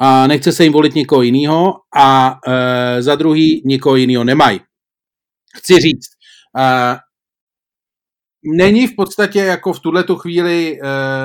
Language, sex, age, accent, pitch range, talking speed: Czech, male, 40-59, native, 145-180 Hz, 130 wpm